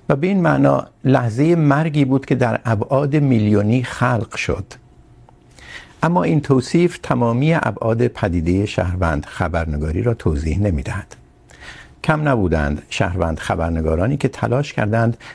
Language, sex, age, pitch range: Urdu, male, 60-79, 90-135 Hz